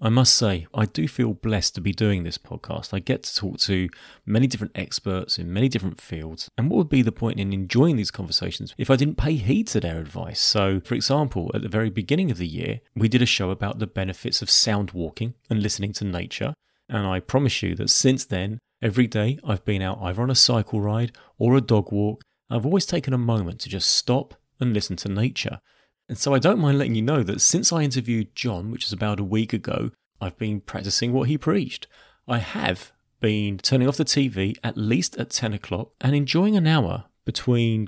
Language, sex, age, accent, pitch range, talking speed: English, male, 30-49, British, 100-125 Hz, 225 wpm